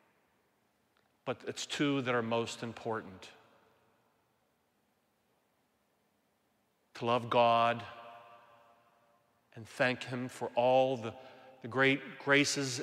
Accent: American